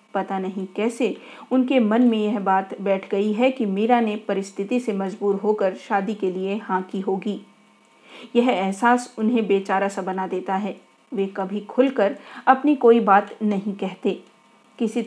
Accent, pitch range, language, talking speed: native, 195-240 Hz, Hindi, 170 wpm